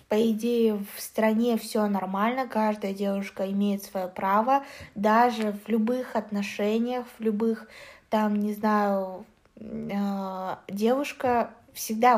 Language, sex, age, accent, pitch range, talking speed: Russian, female, 20-39, native, 200-235 Hz, 110 wpm